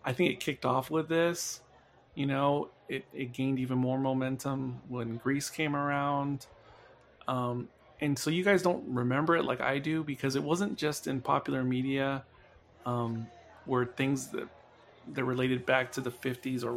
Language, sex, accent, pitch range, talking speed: English, male, American, 125-140 Hz, 170 wpm